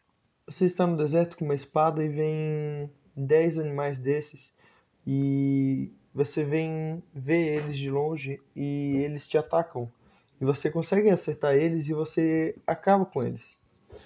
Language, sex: Portuguese, male